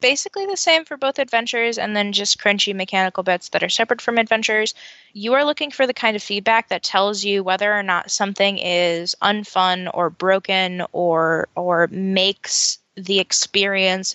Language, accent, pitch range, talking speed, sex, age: English, American, 190-260 Hz, 175 wpm, female, 10-29